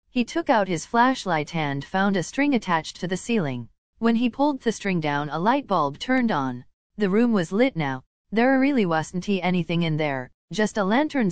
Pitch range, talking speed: 155-230 Hz, 200 wpm